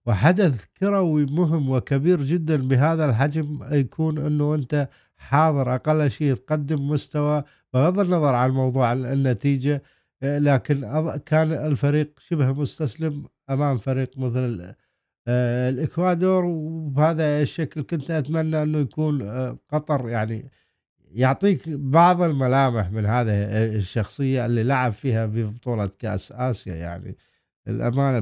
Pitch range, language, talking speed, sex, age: 120-150 Hz, Arabic, 110 wpm, male, 50-69